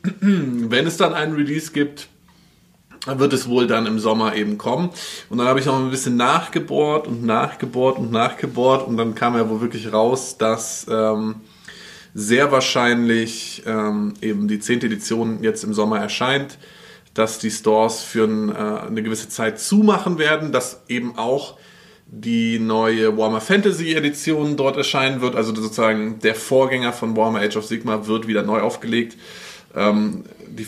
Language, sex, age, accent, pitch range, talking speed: German, male, 20-39, German, 110-145 Hz, 160 wpm